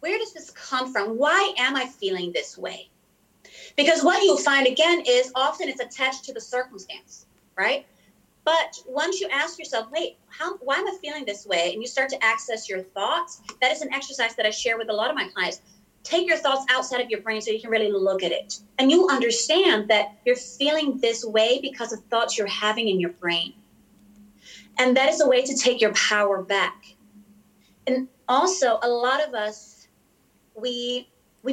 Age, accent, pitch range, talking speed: 30-49, American, 215-295 Hz, 200 wpm